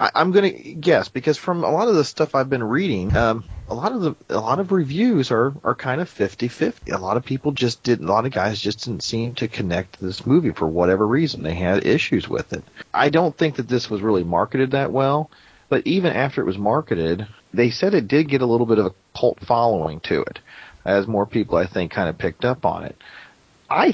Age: 40-59